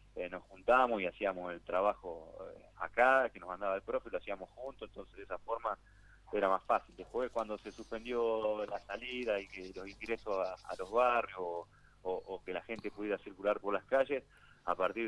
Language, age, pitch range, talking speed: Spanish, 30-49, 95-130 Hz, 200 wpm